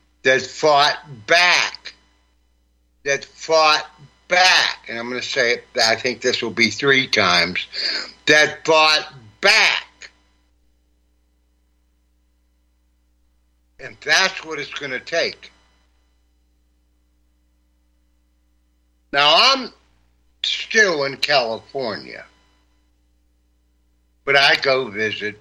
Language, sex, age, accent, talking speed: English, male, 60-79, American, 90 wpm